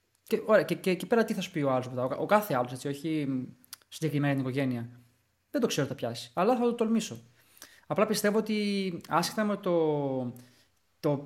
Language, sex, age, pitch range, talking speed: Greek, male, 20-39, 135-185 Hz, 190 wpm